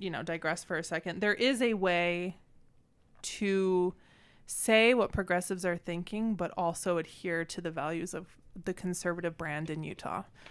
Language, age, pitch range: English, 20-39, 175-205 Hz